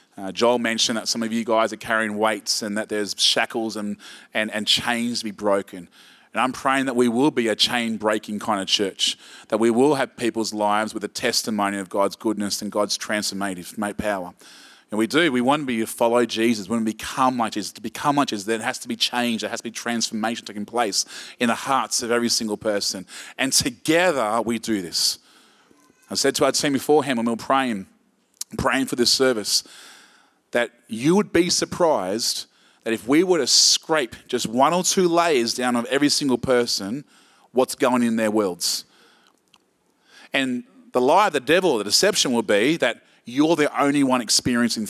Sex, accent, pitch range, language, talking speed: male, Australian, 110-145 Hz, English, 200 wpm